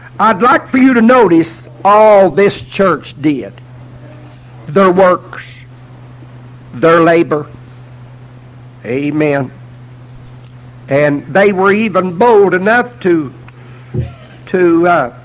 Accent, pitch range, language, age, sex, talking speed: American, 125-180 Hz, English, 60-79, male, 95 wpm